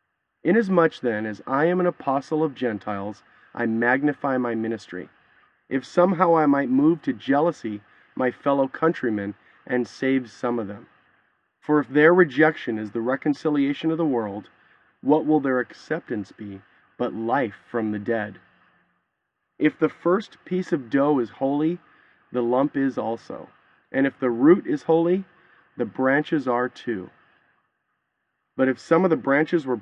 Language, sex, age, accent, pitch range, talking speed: English, male, 30-49, American, 120-160 Hz, 155 wpm